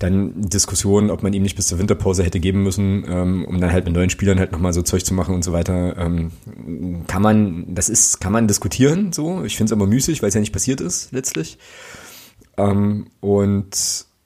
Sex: male